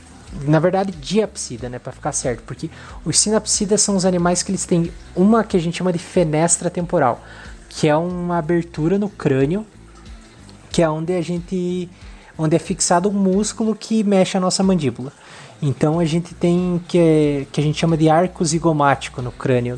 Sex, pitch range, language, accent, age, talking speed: male, 140-185 Hz, Portuguese, Brazilian, 20-39, 180 wpm